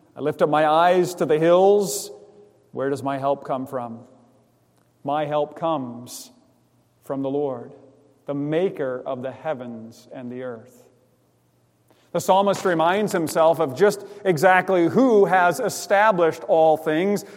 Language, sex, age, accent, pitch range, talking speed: English, male, 40-59, American, 125-165 Hz, 135 wpm